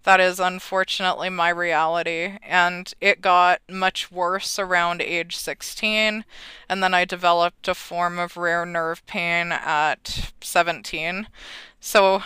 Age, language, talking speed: 20-39, English, 125 wpm